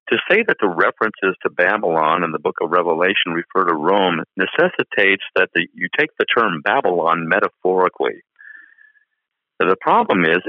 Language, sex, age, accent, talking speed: English, male, 50-69, American, 150 wpm